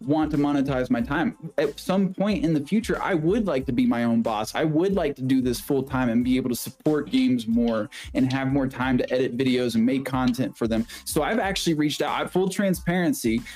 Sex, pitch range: male, 130-190 Hz